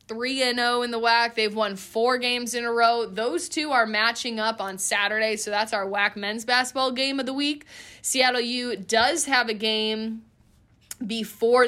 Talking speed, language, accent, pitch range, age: 190 wpm, English, American, 195-225 Hz, 20-39